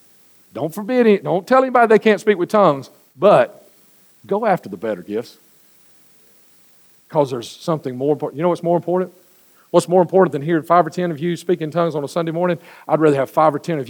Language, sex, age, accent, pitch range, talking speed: English, male, 40-59, American, 160-215 Hz, 215 wpm